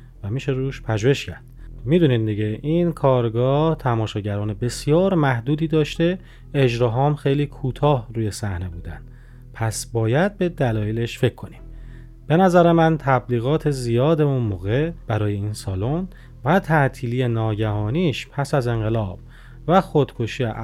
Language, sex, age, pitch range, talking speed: Persian, male, 30-49, 115-150 Hz, 120 wpm